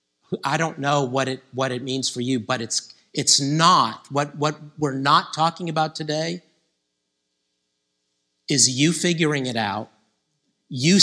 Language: English